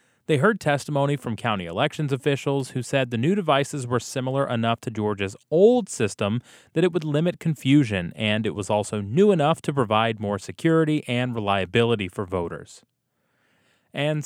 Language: English